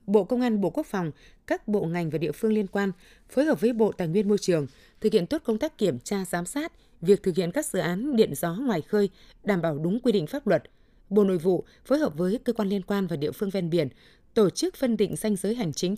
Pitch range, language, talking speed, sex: 170-220 Hz, Vietnamese, 265 wpm, female